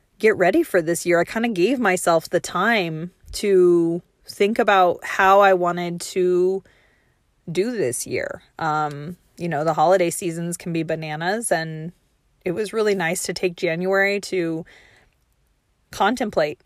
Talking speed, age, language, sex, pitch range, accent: 150 wpm, 30-49, English, female, 165-190 Hz, American